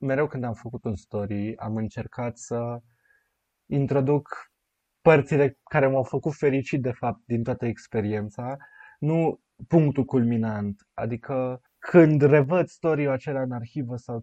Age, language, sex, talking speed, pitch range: 20-39, Romanian, male, 130 wpm, 125-150 Hz